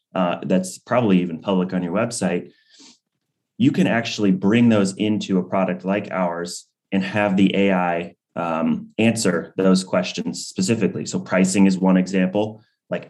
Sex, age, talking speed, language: male, 30-49, 150 wpm, English